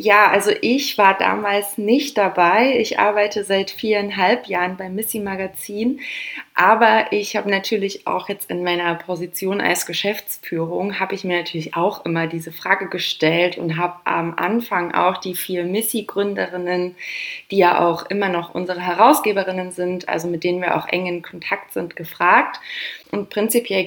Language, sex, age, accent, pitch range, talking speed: German, female, 20-39, German, 185-230 Hz, 155 wpm